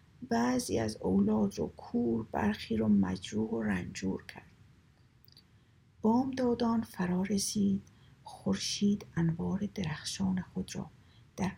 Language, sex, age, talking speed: Persian, female, 50-69, 110 wpm